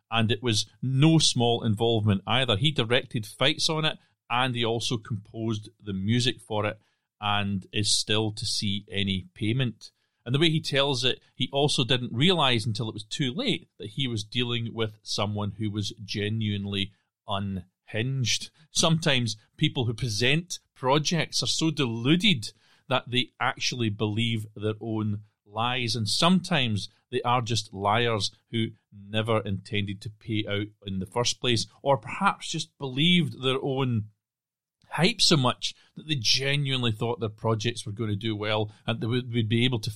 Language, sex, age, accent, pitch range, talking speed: English, male, 40-59, British, 105-130 Hz, 165 wpm